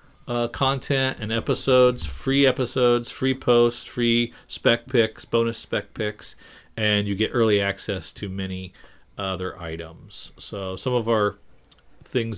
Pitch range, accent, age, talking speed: 100-120 Hz, American, 40-59, 135 wpm